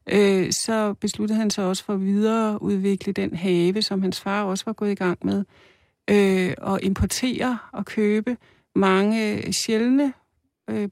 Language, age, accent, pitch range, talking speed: Danish, 60-79, native, 185-220 Hz, 155 wpm